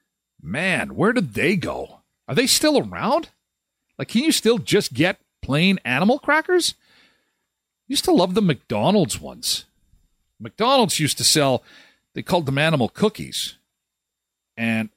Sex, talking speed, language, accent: male, 135 wpm, English, American